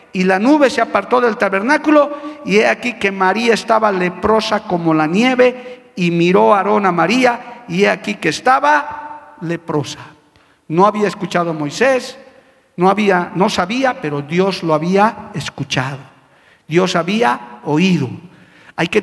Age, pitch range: 50-69, 165-250 Hz